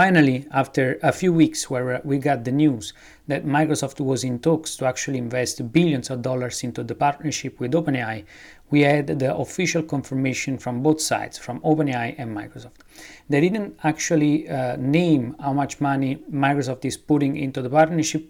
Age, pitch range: 30-49, 130-150 Hz